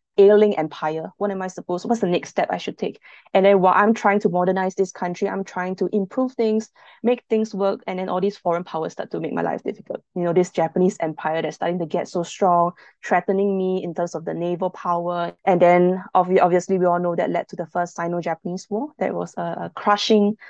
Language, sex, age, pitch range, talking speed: English, female, 20-39, 175-200 Hz, 230 wpm